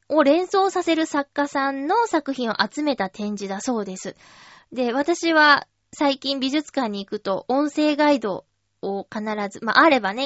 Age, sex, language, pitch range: 20-39, female, Japanese, 210-290 Hz